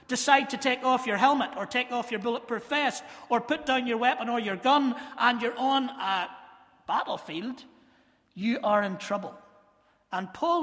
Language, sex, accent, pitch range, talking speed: English, male, British, 225-275 Hz, 175 wpm